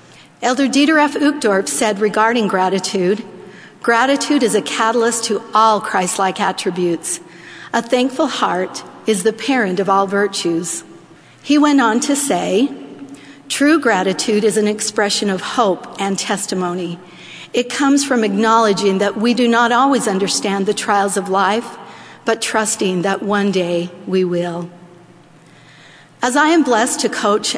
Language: English